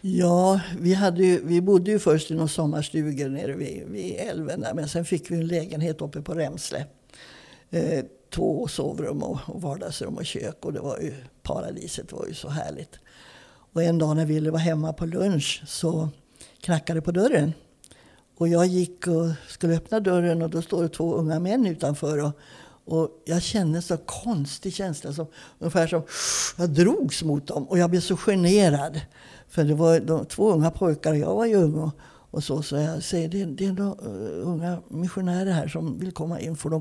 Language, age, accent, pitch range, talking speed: Swedish, 60-79, native, 155-185 Hz, 195 wpm